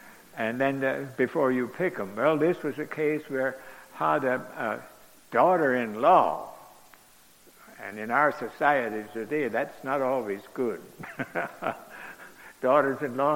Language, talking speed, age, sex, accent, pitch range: English, 125 wpm, 60-79, male, American, 120-145 Hz